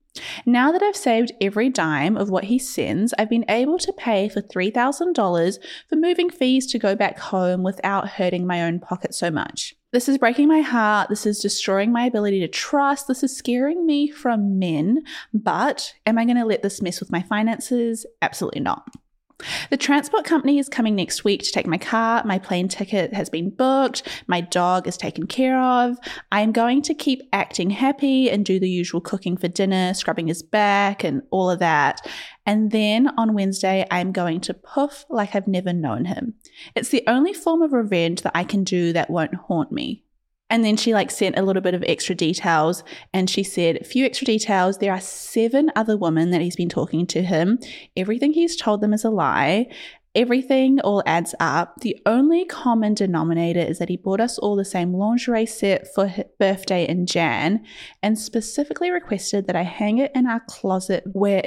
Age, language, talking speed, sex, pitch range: 20-39, English, 195 wpm, female, 185-250 Hz